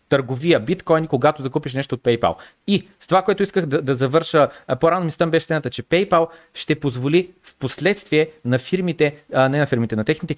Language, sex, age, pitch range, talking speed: Bulgarian, male, 30-49, 135-175 Hz, 195 wpm